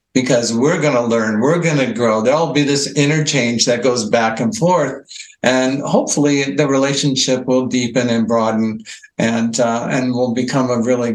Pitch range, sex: 125-150 Hz, male